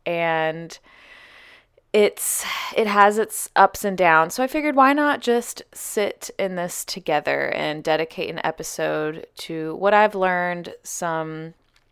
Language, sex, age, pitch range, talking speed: English, female, 20-39, 170-235 Hz, 135 wpm